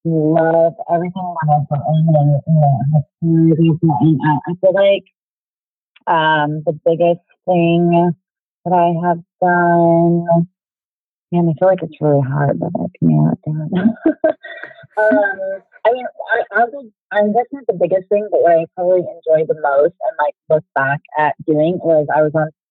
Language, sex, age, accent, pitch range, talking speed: English, female, 30-49, American, 155-185 Hz, 150 wpm